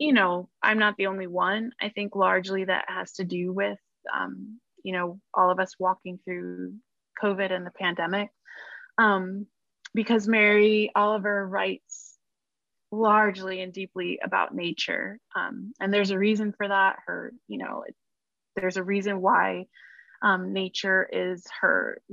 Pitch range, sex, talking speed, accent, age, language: 185-215 Hz, female, 145 wpm, American, 20-39, English